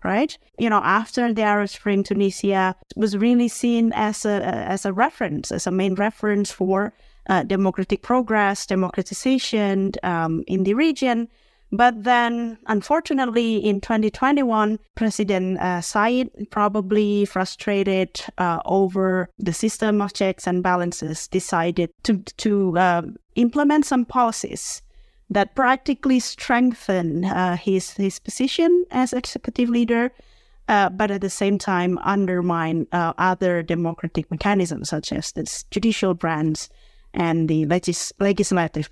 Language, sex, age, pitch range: Indonesian, female, 30-49, 180-230 Hz